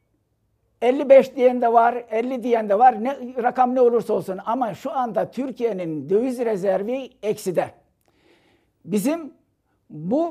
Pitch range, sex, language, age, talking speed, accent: 215-260 Hz, male, Turkish, 60-79, 130 wpm, native